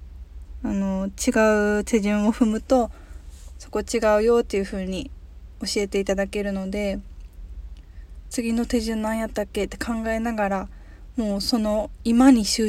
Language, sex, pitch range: Japanese, female, 180-225 Hz